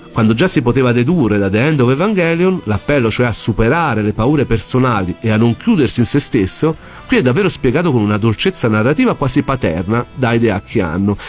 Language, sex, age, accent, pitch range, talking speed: Italian, male, 40-59, native, 110-150 Hz, 195 wpm